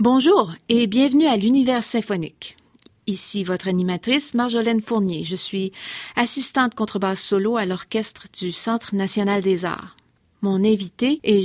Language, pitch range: French, 195-235 Hz